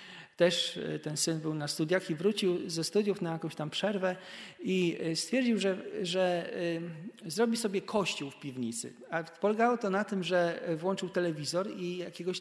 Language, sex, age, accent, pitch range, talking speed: Polish, male, 40-59, native, 160-190 Hz, 160 wpm